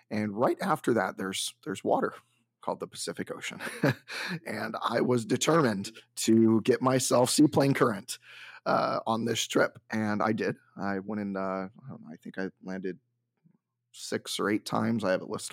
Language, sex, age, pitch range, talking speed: English, male, 30-49, 105-120 Hz, 180 wpm